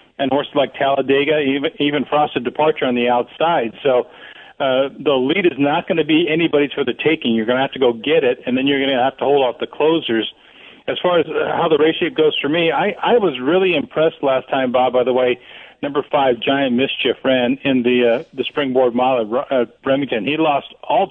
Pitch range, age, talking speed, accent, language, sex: 130-155 Hz, 50-69, 220 wpm, American, English, male